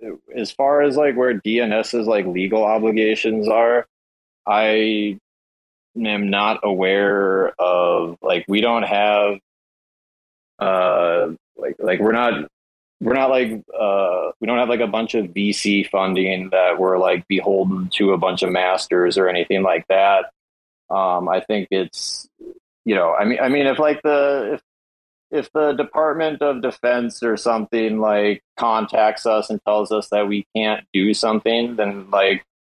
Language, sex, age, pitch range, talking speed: English, male, 30-49, 95-110 Hz, 155 wpm